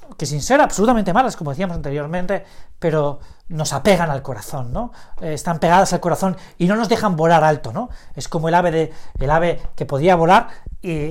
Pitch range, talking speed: 145-200 Hz, 200 wpm